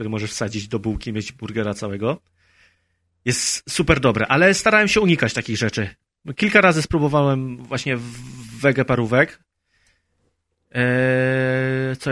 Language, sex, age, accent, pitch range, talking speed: Polish, male, 30-49, native, 115-150 Hz, 120 wpm